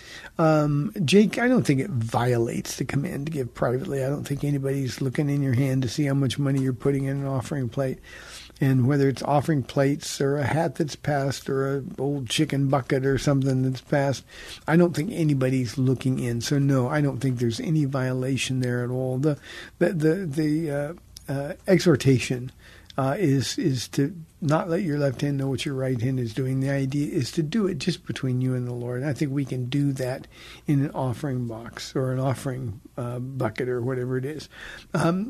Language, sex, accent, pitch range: English, male, American, 125-145 Hz